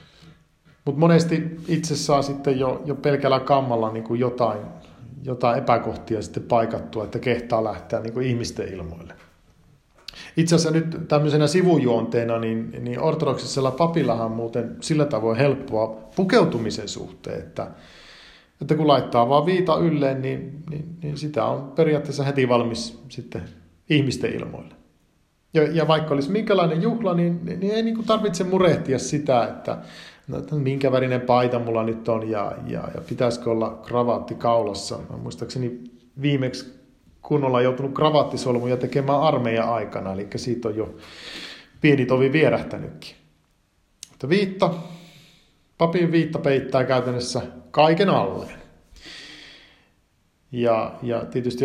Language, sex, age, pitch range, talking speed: Finnish, male, 50-69, 115-150 Hz, 130 wpm